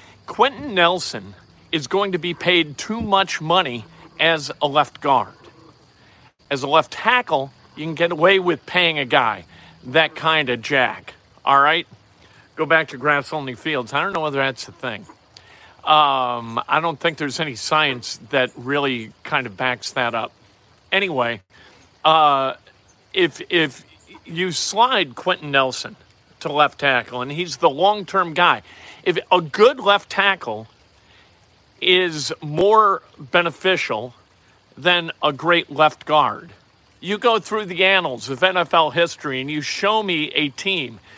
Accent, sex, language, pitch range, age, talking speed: American, male, English, 135-185 Hz, 50-69, 145 wpm